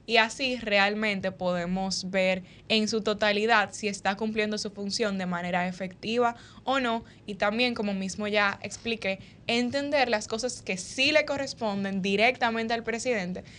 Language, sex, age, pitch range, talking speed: Spanish, female, 10-29, 190-225 Hz, 150 wpm